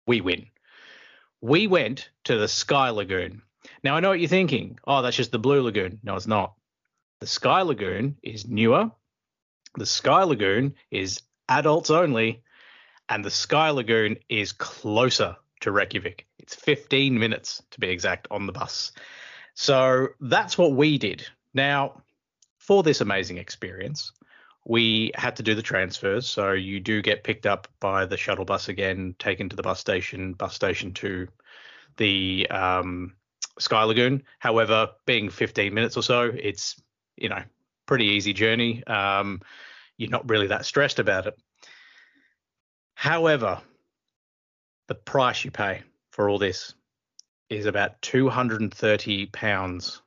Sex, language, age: male, English, 30-49